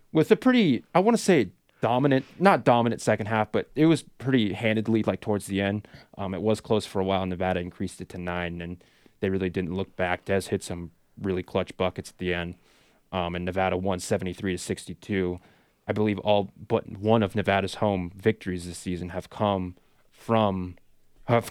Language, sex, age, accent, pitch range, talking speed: English, male, 20-39, American, 95-120 Hz, 200 wpm